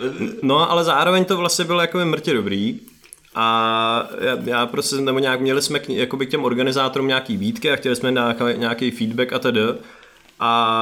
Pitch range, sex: 110-120 Hz, male